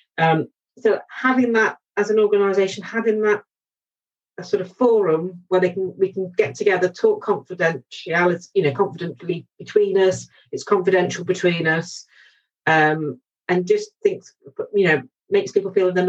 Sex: female